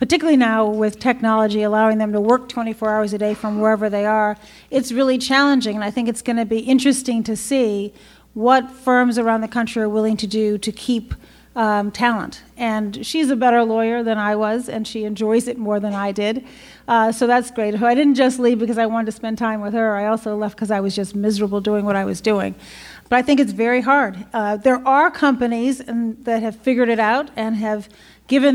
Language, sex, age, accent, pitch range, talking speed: English, female, 40-59, American, 215-250 Hz, 225 wpm